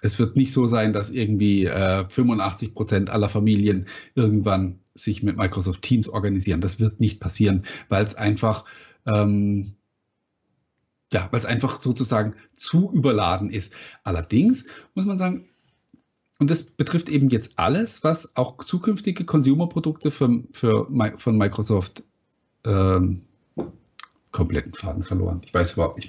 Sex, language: male, German